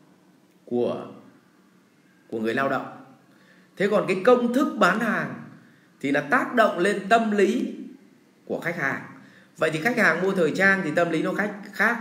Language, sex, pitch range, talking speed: English, male, 150-205 Hz, 170 wpm